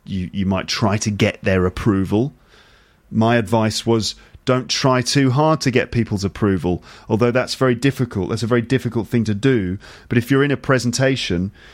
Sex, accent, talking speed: male, British, 185 wpm